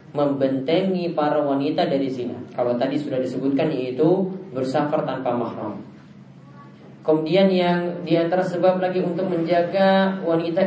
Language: Indonesian